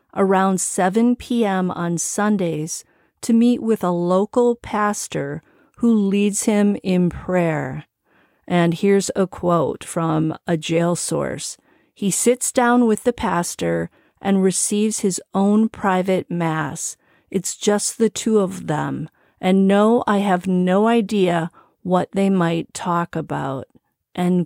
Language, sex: English, female